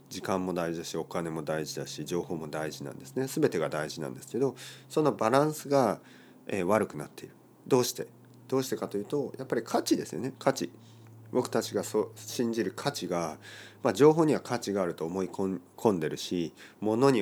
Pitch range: 95-155 Hz